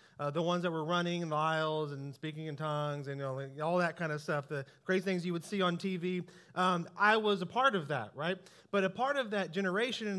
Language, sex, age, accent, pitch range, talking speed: English, male, 30-49, American, 170-220 Hz, 260 wpm